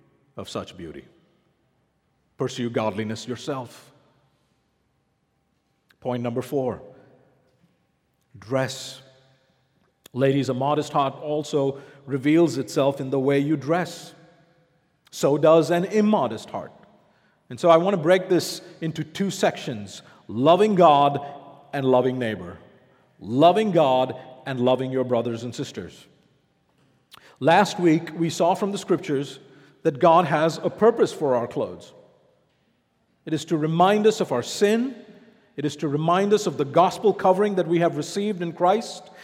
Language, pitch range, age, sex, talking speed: English, 140-205 Hz, 50-69, male, 135 wpm